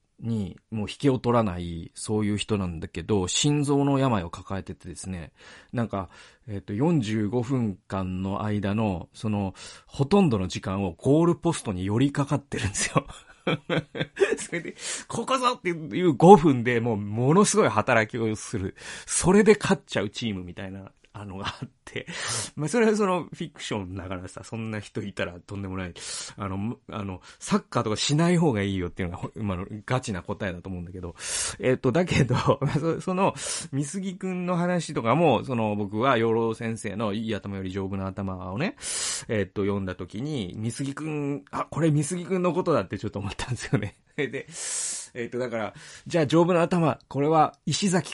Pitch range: 100-150 Hz